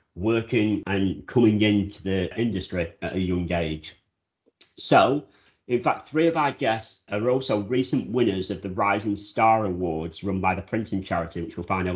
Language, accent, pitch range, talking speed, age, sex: English, British, 90-110 Hz, 175 wpm, 40-59, male